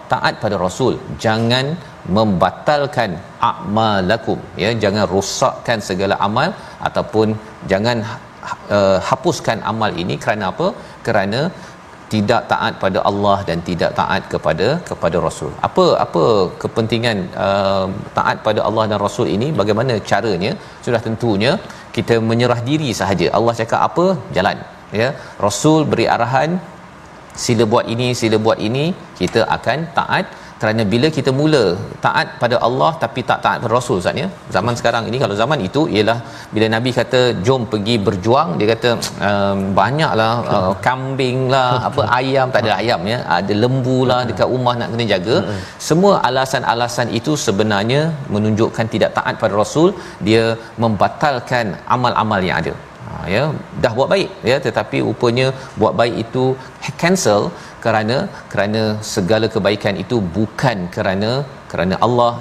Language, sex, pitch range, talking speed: Malayalam, male, 105-130 Hz, 140 wpm